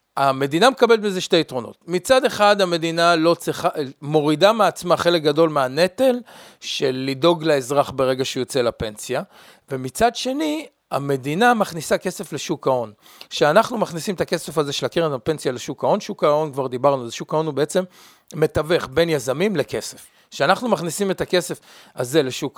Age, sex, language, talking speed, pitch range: 40-59, male, Hebrew, 150 wpm, 145-200 Hz